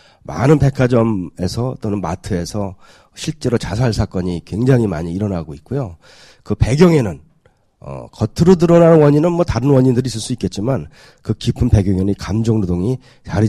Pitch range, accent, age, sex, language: 100-140 Hz, native, 40-59, male, Korean